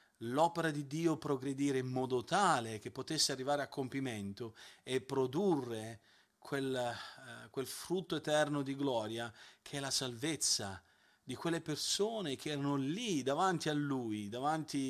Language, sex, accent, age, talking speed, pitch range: Italian, male, native, 40-59, 135 wpm, 120-155 Hz